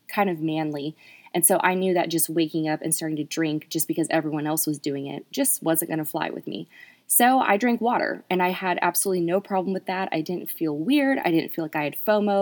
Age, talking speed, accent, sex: 20-39, 250 wpm, American, female